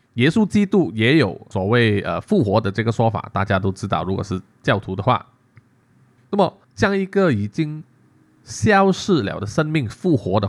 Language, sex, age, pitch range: Chinese, male, 20-39, 105-135 Hz